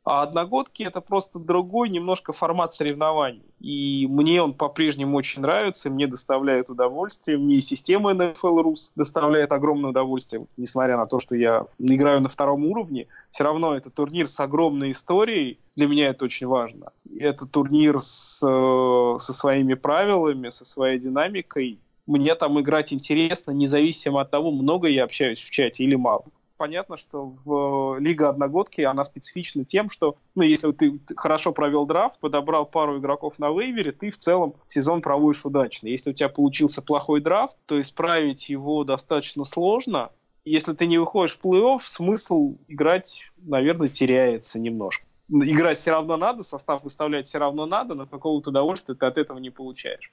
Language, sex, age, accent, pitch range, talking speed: Russian, male, 20-39, native, 140-165 Hz, 160 wpm